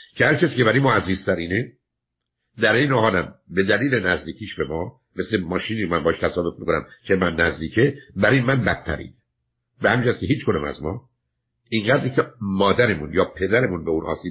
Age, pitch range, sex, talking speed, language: 50-69, 95-135 Hz, male, 170 wpm, Persian